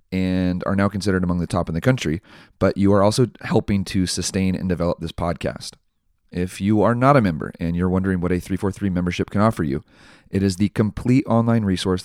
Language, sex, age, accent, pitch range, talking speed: English, male, 30-49, American, 90-110 Hz, 215 wpm